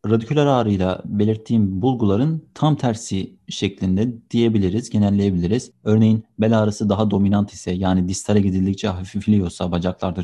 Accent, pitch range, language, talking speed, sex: native, 95-115 Hz, Turkish, 115 wpm, male